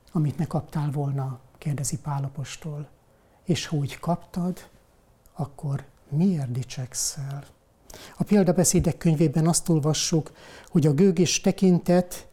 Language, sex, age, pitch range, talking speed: Hungarian, male, 60-79, 145-170 Hz, 100 wpm